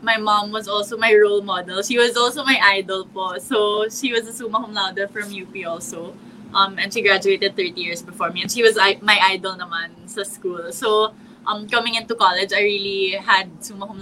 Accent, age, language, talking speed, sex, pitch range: Filipino, 20-39, English, 210 wpm, female, 185-215 Hz